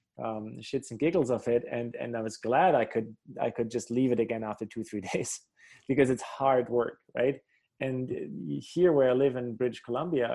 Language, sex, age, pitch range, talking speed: English, male, 20-39, 115-130 Hz, 210 wpm